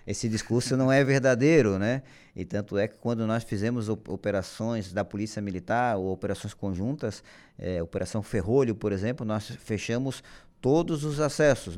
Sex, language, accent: male, Portuguese, Brazilian